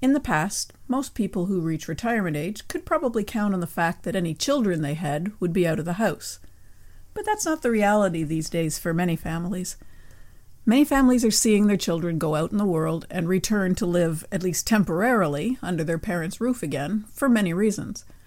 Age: 50-69